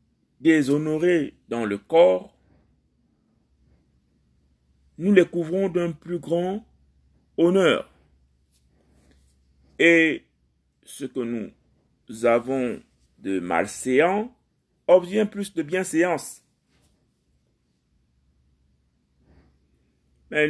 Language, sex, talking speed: French, male, 65 wpm